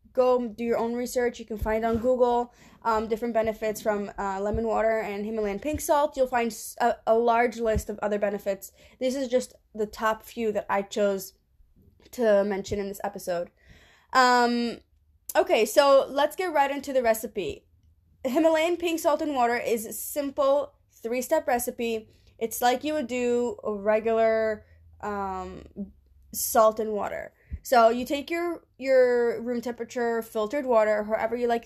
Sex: female